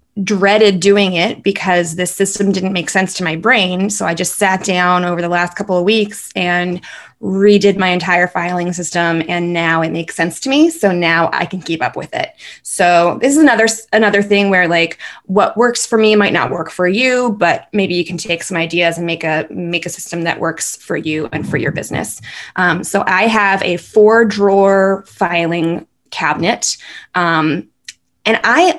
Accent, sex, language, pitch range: American, female, English, 175-210 Hz